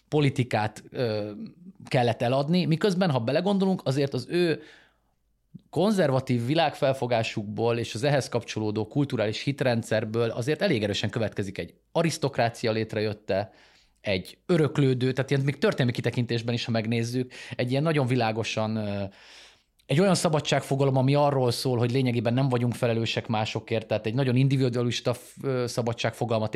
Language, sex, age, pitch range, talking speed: Hungarian, male, 30-49, 115-150 Hz, 125 wpm